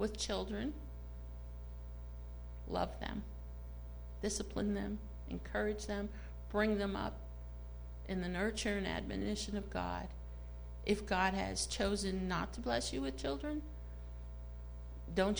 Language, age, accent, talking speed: English, 50-69, American, 115 wpm